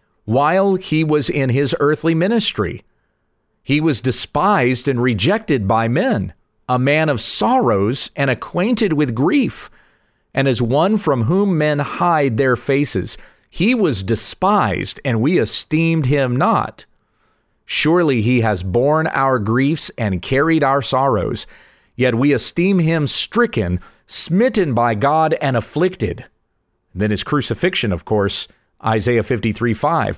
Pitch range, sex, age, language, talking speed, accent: 110-155 Hz, male, 40-59, English, 135 wpm, American